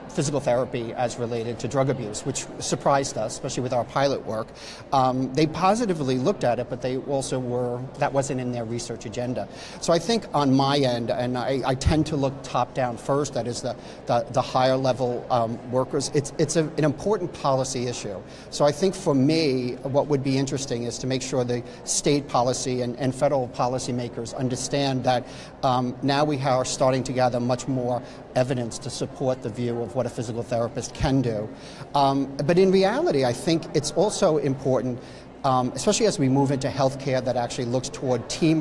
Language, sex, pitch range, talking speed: English, male, 120-140 Hz, 195 wpm